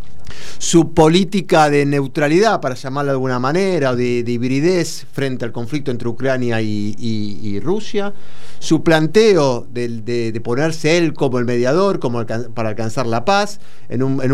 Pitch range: 125-170 Hz